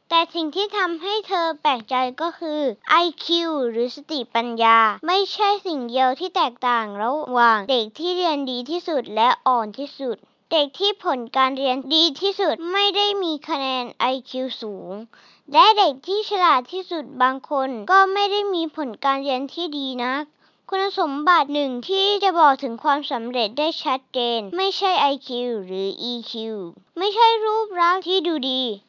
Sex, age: male, 20-39